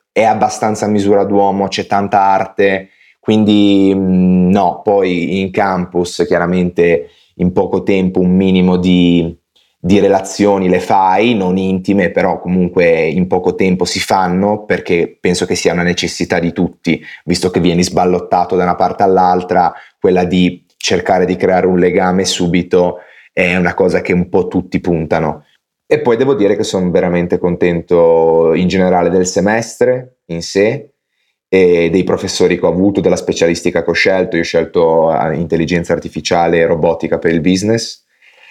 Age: 30-49